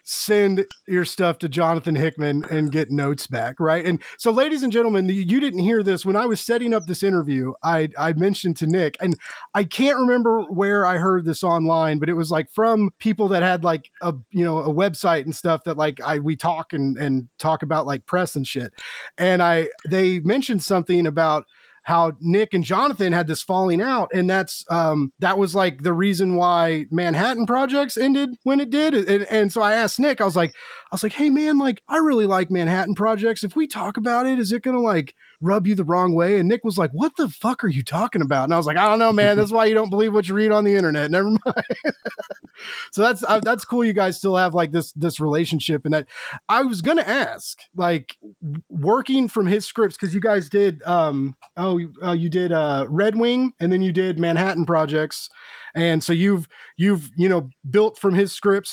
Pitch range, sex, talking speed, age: 165-215 Hz, male, 225 wpm, 30-49